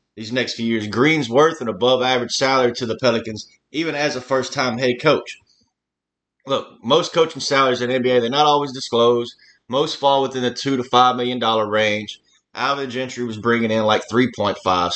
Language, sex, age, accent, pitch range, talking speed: English, male, 30-49, American, 115-145 Hz, 185 wpm